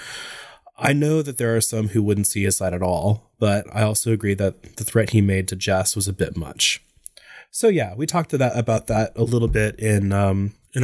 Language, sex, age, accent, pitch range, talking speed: English, male, 20-39, American, 100-115 Hz, 235 wpm